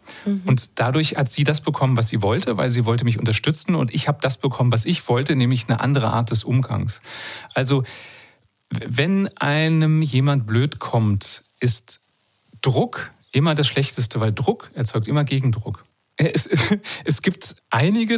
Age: 30-49